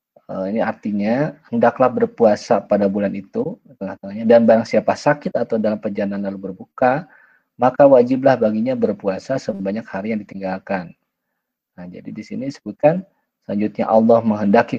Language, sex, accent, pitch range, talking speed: Indonesian, male, native, 95-120 Hz, 130 wpm